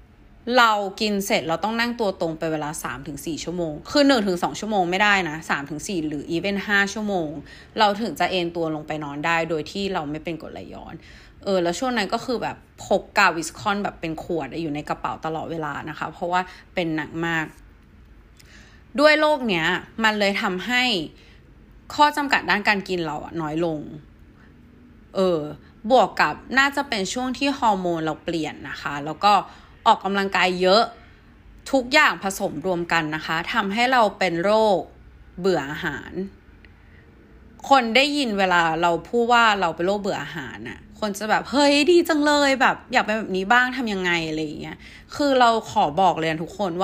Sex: female